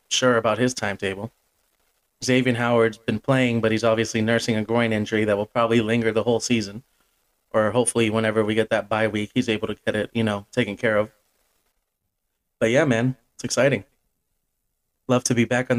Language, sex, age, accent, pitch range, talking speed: English, male, 30-49, American, 110-125 Hz, 190 wpm